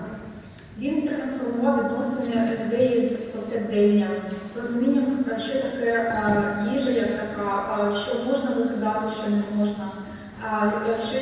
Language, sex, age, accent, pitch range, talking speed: Ukrainian, female, 20-39, native, 215-250 Hz, 95 wpm